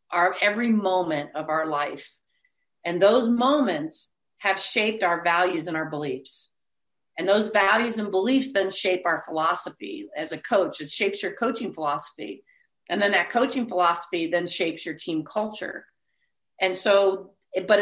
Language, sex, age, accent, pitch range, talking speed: English, female, 40-59, American, 170-220 Hz, 155 wpm